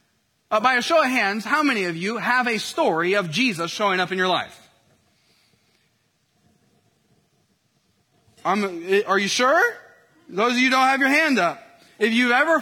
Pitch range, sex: 170-245 Hz, male